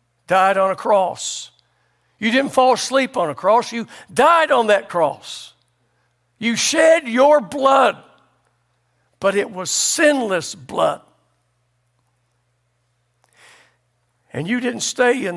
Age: 60-79